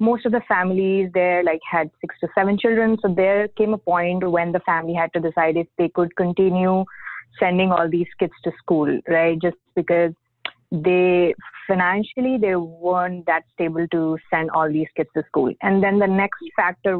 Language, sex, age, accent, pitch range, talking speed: English, female, 20-39, Indian, 165-185 Hz, 185 wpm